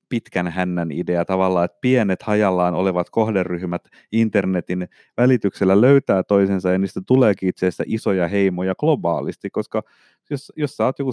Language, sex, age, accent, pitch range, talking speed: Finnish, male, 30-49, native, 95-135 Hz, 145 wpm